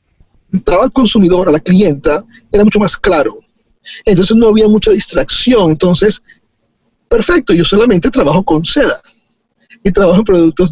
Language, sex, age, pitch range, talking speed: Spanish, male, 40-59, 175-225 Hz, 140 wpm